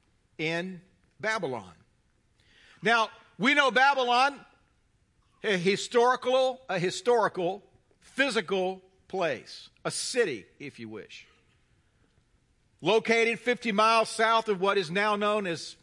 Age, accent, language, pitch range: 50-69, American, English, 165-230 Hz